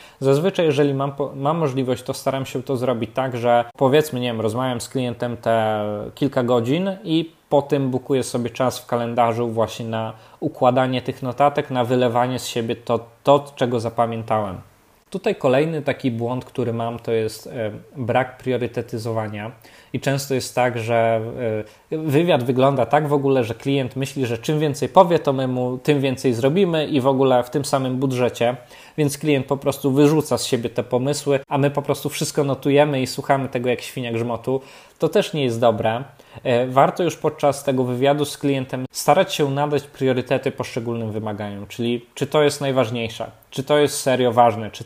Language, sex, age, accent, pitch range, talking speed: Polish, male, 20-39, native, 120-140 Hz, 175 wpm